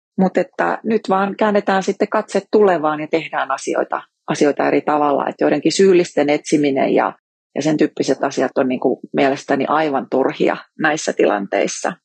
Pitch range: 150-185 Hz